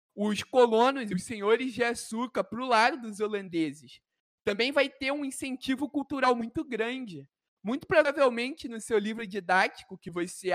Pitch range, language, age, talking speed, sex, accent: 205-255 Hz, Portuguese, 20-39, 160 wpm, male, Brazilian